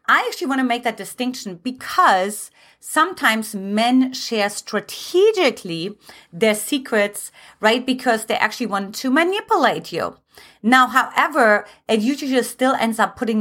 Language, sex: English, female